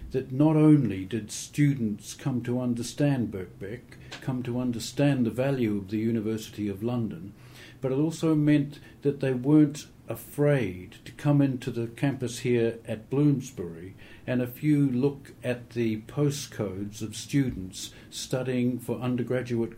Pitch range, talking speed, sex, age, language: 110-135 Hz, 145 wpm, male, 60-79, English